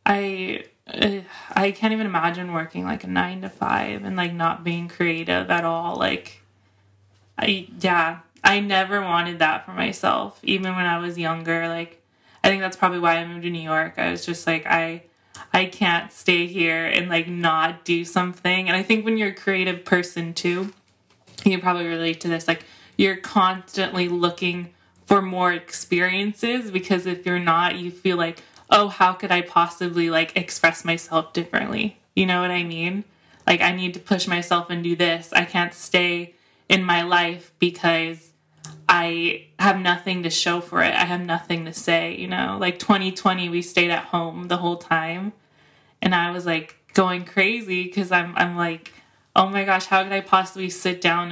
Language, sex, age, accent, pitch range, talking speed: English, female, 20-39, American, 165-185 Hz, 185 wpm